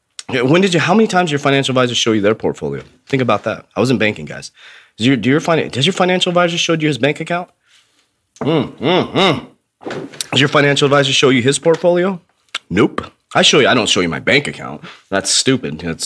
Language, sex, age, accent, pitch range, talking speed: English, male, 30-49, American, 110-145 Hz, 210 wpm